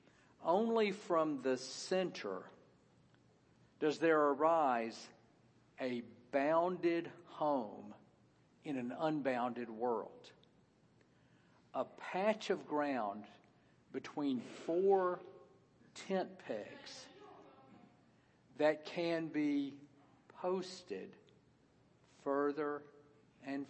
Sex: male